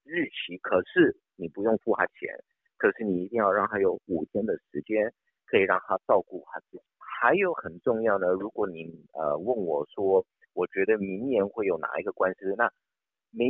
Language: Chinese